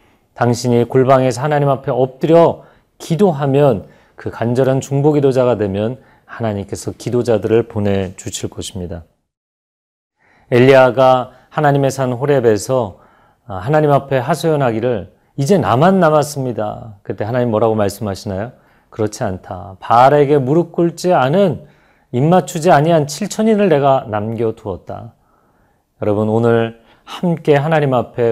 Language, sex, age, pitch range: Korean, male, 40-59, 110-140 Hz